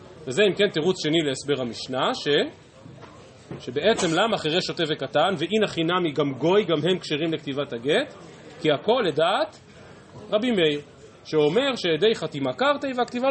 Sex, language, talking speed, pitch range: male, Hebrew, 145 wpm, 155-220 Hz